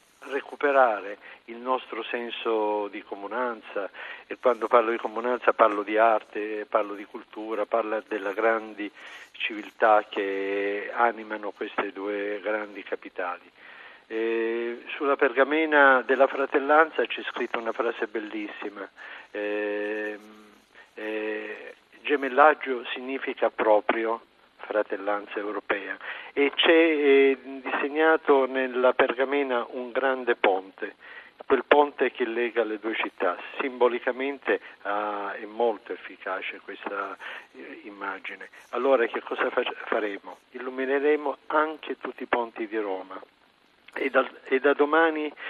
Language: Italian